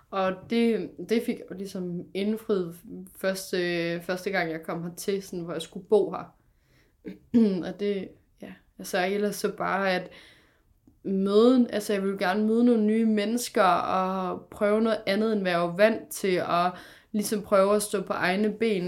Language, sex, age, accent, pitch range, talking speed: Danish, female, 20-39, native, 180-215 Hz, 170 wpm